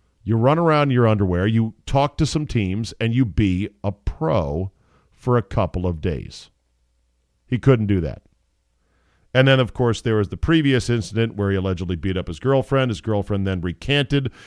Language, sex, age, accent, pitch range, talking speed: English, male, 50-69, American, 90-120 Hz, 185 wpm